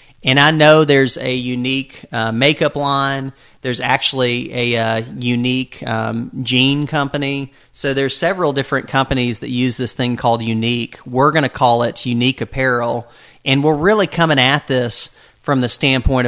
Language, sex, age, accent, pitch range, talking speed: English, male, 40-59, American, 120-135 Hz, 160 wpm